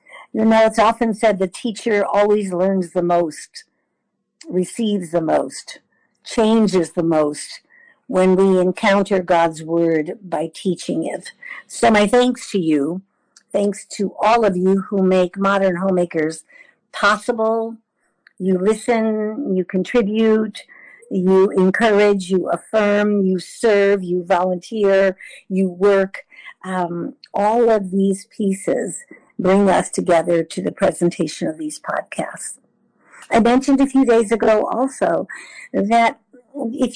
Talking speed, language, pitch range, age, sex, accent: 125 wpm, English, 185-235 Hz, 50-69, female, American